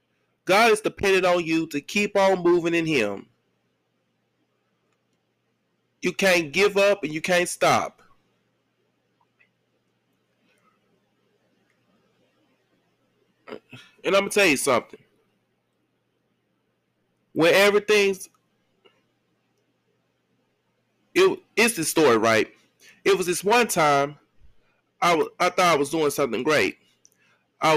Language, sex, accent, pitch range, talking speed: English, male, American, 160-200 Hz, 100 wpm